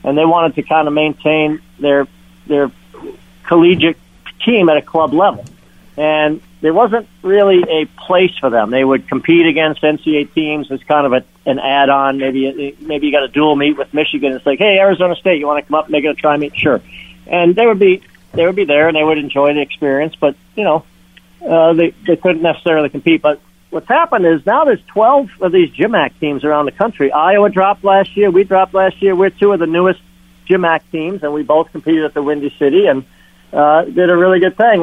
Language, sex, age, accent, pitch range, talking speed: English, male, 50-69, American, 145-180 Hz, 225 wpm